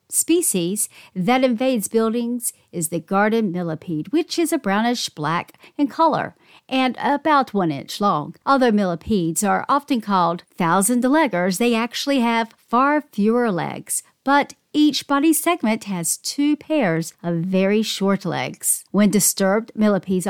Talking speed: 135 wpm